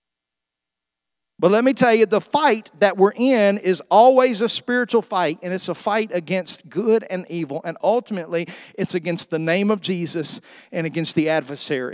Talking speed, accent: 175 wpm, American